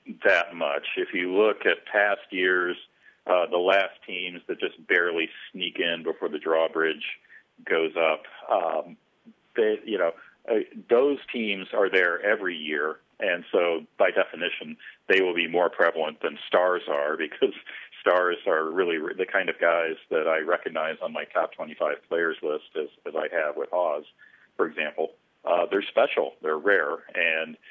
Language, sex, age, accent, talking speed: English, male, 40-59, American, 165 wpm